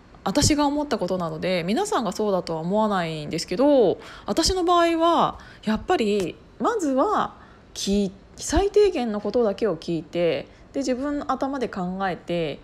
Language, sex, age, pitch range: Japanese, female, 20-39, 180-280 Hz